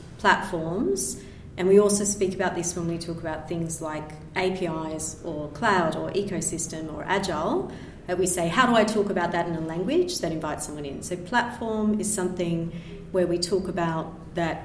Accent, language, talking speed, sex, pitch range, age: Australian, English, 185 wpm, female, 155-180 Hz, 30-49